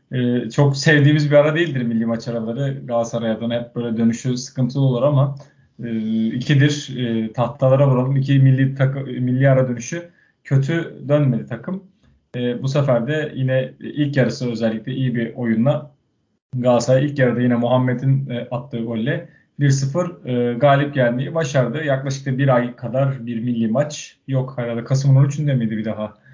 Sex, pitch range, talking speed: male, 115-140 Hz, 155 wpm